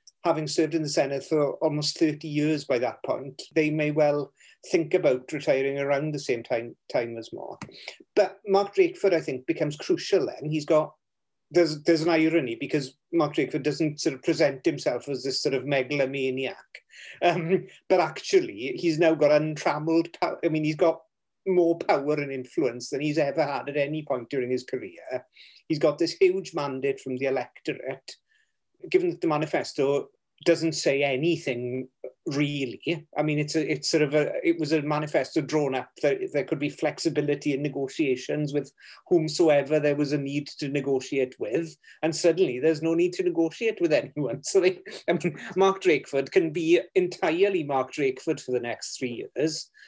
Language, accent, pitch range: English, British, 145-175 Hz